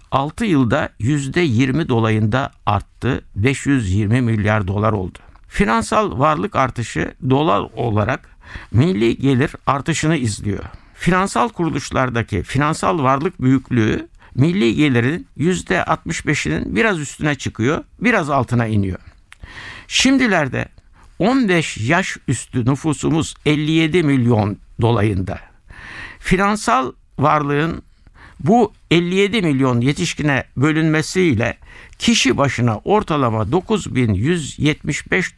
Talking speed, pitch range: 85 wpm, 115-170 Hz